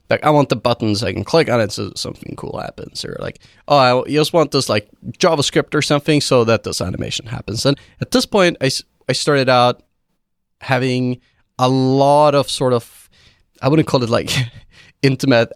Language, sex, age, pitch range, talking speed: English, male, 30-49, 110-140 Hz, 195 wpm